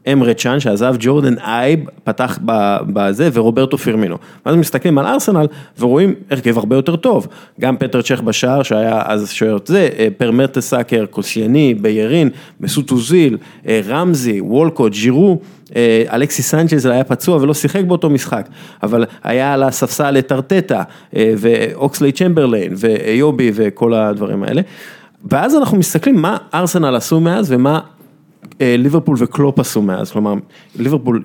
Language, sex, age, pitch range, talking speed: English, male, 30-49, 115-160 Hz, 105 wpm